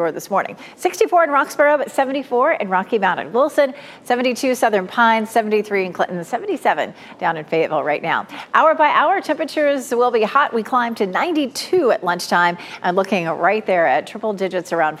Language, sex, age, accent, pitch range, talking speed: English, female, 40-59, American, 185-265 Hz, 175 wpm